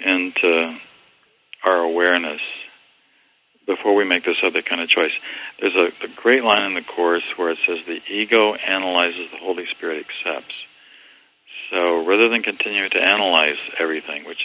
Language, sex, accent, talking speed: English, male, American, 155 wpm